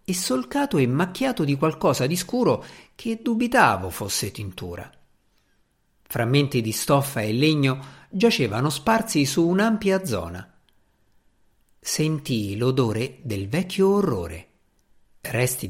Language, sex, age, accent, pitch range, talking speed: Italian, male, 50-69, native, 110-180 Hz, 105 wpm